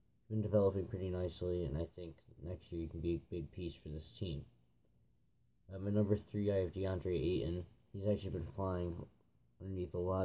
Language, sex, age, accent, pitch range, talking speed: English, male, 20-39, American, 85-95 Hz, 195 wpm